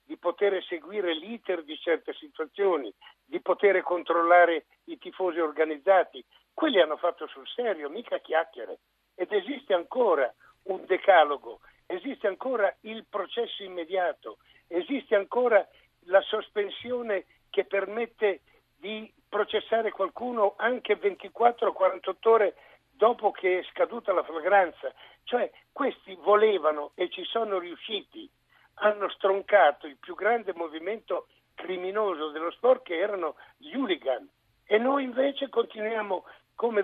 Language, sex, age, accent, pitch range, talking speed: Italian, male, 60-79, native, 175-235 Hz, 120 wpm